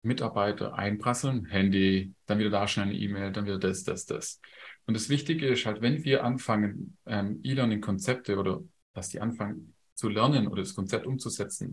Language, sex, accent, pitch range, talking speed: German, male, German, 100-135 Hz, 175 wpm